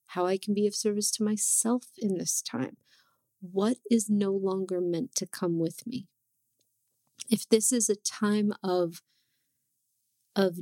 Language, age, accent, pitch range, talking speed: English, 30-49, American, 175-210 Hz, 155 wpm